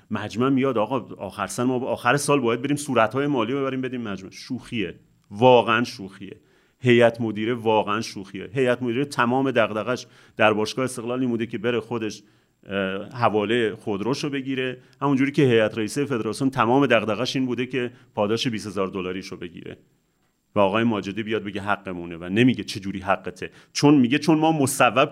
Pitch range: 110-140 Hz